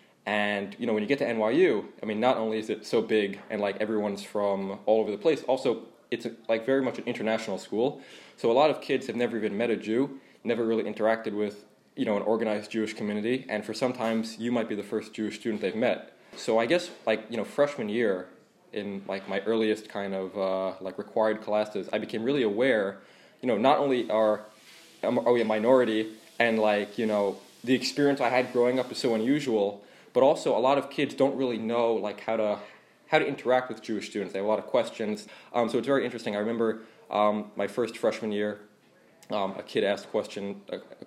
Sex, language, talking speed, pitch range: male, English, 225 wpm, 105-115 Hz